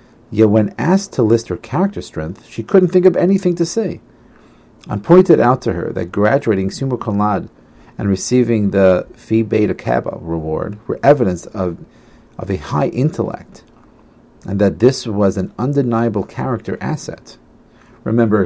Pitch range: 90-120 Hz